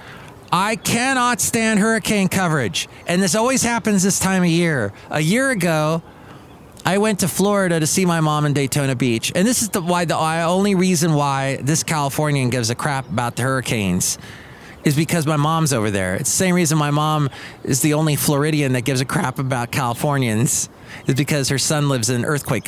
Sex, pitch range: male, 130-175 Hz